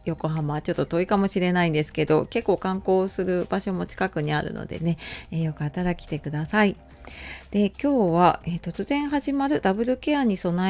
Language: Japanese